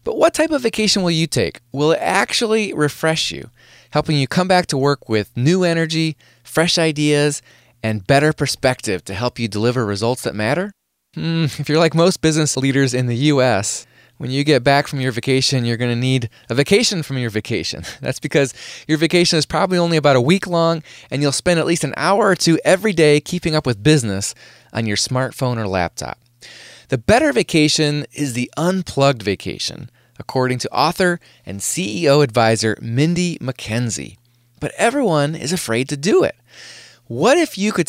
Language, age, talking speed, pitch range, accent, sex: English, 20-39, 185 wpm, 120-165 Hz, American, male